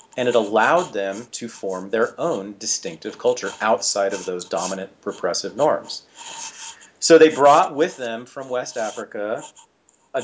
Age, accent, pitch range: 40-59, American, 105-145 Hz